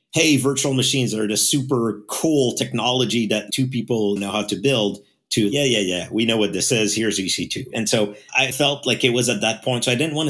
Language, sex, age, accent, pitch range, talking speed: English, male, 50-69, American, 100-130 Hz, 235 wpm